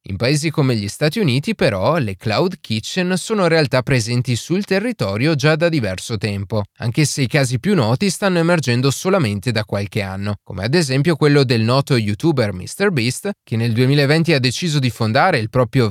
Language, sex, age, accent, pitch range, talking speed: Italian, male, 20-39, native, 110-160 Hz, 185 wpm